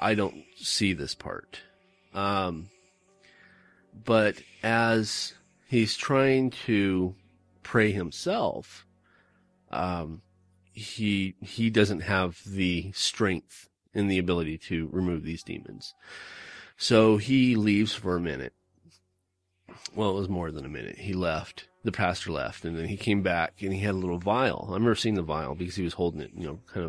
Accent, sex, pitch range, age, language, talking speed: American, male, 85-110 Hz, 30-49, English, 155 wpm